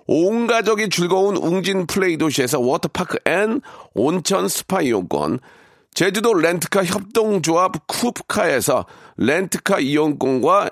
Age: 40-59